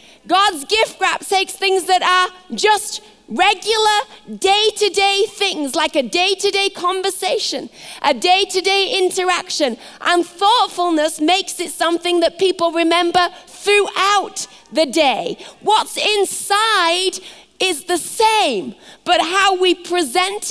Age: 30-49